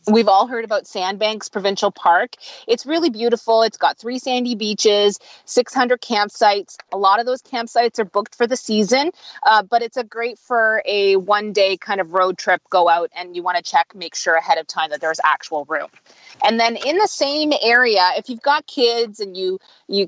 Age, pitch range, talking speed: 30-49, 195-240 Hz, 200 wpm